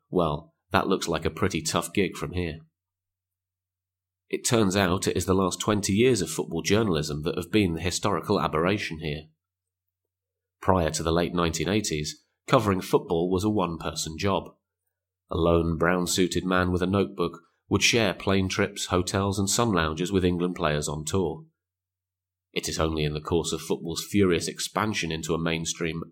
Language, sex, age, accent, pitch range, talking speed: English, male, 30-49, British, 85-95 Hz, 170 wpm